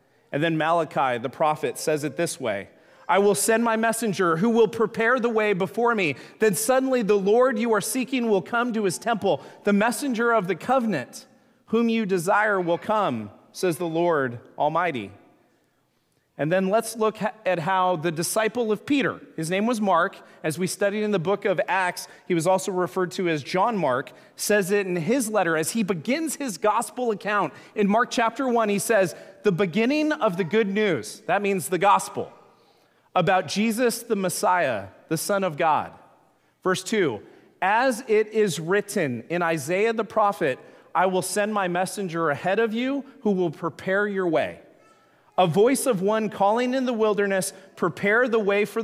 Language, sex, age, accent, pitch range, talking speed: English, male, 30-49, American, 180-230 Hz, 180 wpm